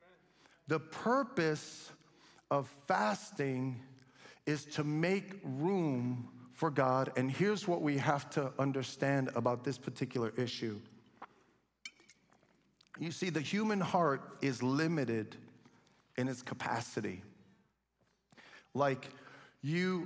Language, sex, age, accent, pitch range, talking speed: English, male, 50-69, American, 125-165 Hz, 100 wpm